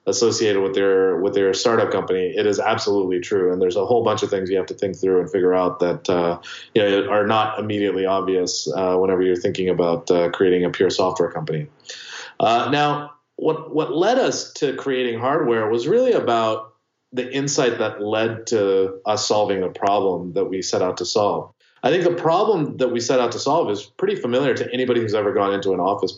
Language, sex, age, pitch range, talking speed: English, male, 30-49, 100-140 Hz, 215 wpm